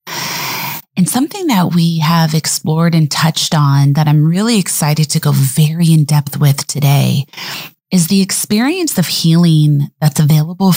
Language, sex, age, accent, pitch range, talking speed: English, female, 20-39, American, 150-170 Hz, 145 wpm